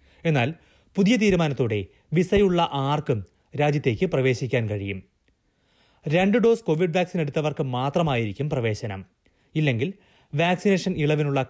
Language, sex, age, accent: Malayalam, male, 30-49, native